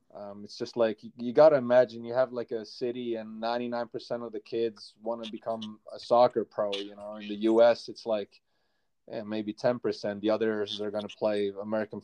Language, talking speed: English, 205 wpm